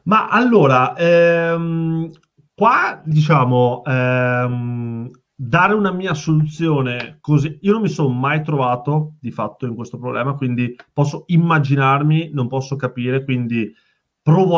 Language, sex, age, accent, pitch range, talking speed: Italian, male, 30-49, native, 125-155 Hz, 125 wpm